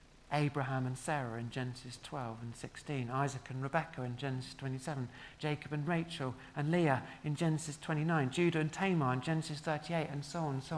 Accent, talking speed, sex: British, 185 wpm, male